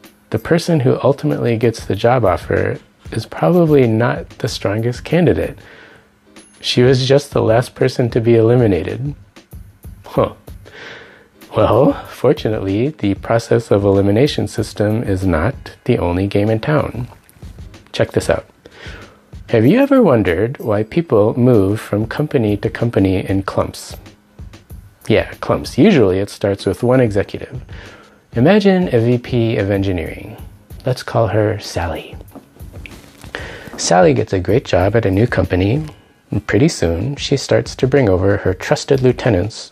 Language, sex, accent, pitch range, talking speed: English, male, American, 95-125 Hz, 135 wpm